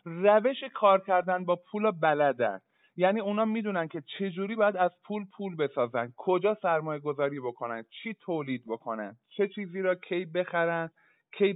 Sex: male